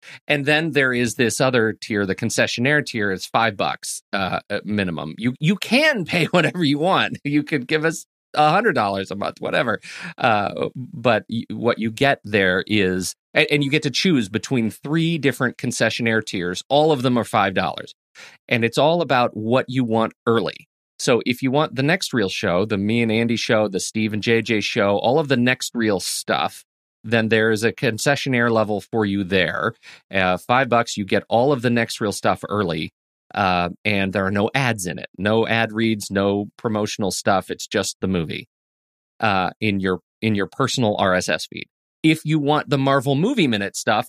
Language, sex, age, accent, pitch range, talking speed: English, male, 30-49, American, 105-140 Hz, 190 wpm